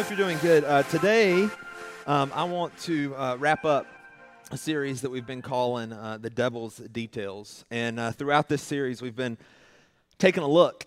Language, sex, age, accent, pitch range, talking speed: English, male, 30-49, American, 120-150 Hz, 180 wpm